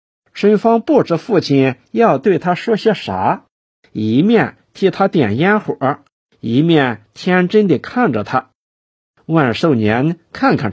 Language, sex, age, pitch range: Chinese, male, 50-69, 125-195 Hz